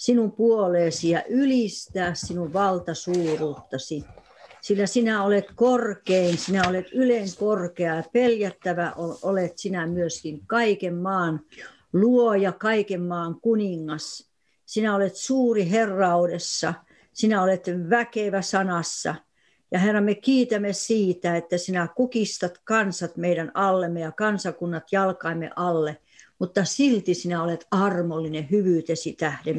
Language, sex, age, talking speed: Finnish, female, 60-79, 110 wpm